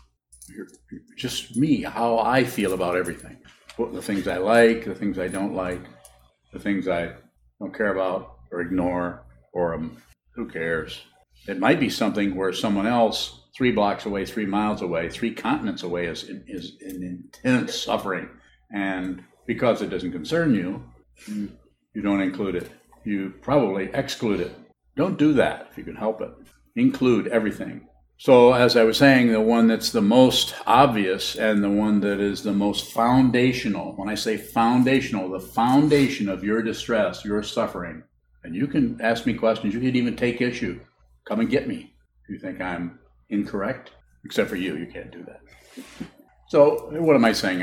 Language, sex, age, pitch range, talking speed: English, male, 50-69, 90-115 Hz, 170 wpm